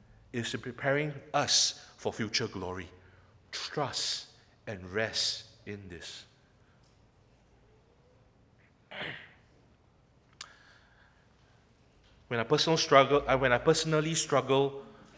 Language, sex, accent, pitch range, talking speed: English, male, Malaysian, 110-135 Hz, 75 wpm